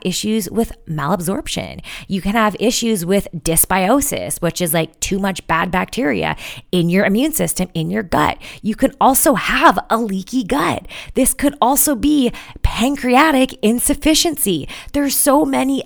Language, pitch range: English, 175-245 Hz